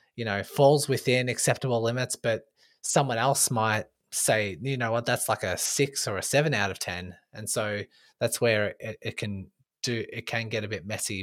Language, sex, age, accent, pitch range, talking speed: English, male, 20-39, Australian, 105-135 Hz, 205 wpm